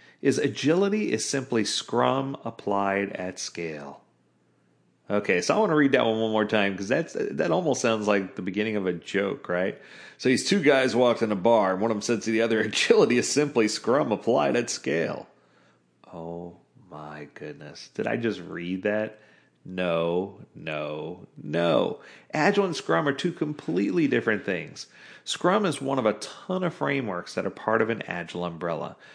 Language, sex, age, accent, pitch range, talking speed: English, male, 40-59, American, 95-140 Hz, 180 wpm